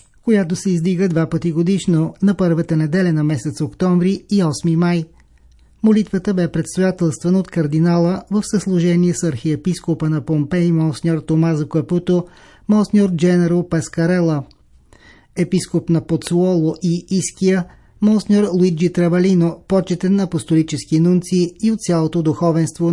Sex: male